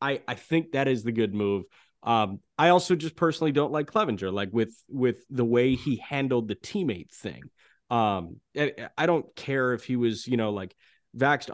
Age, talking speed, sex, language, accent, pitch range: 30-49, 200 wpm, male, English, American, 105-125 Hz